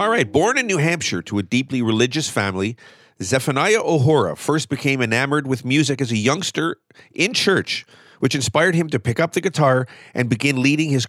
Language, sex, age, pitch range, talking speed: English, male, 40-59, 125-165 Hz, 190 wpm